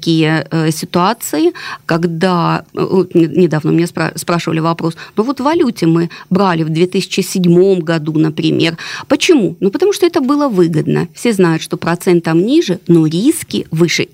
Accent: native